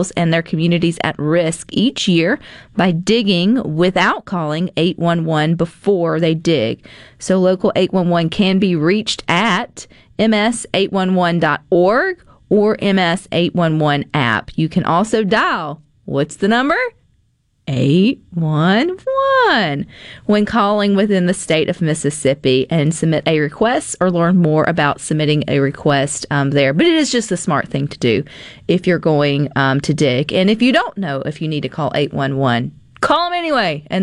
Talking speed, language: 150 wpm, English